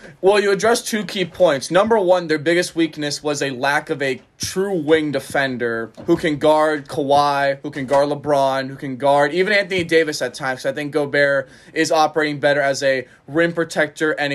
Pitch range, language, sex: 140-175 Hz, English, male